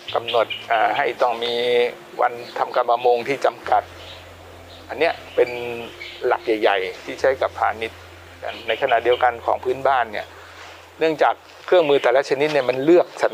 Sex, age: male, 60-79